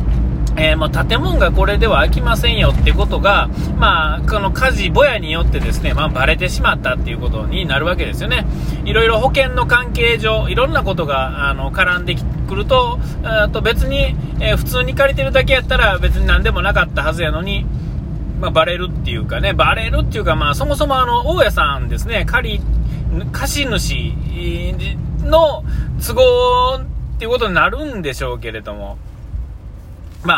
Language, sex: Japanese, male